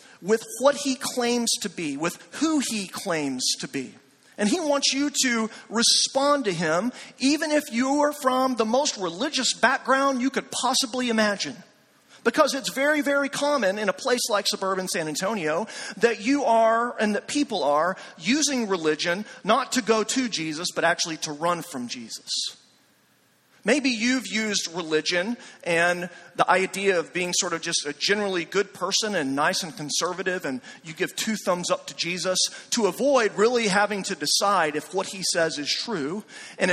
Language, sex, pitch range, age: English, male, 180-255 Hz, 40-59